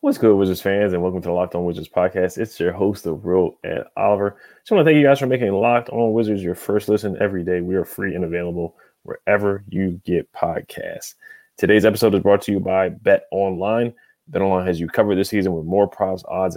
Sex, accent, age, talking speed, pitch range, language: male, American, 20-39, 230 wpm, 90-105 Hz, English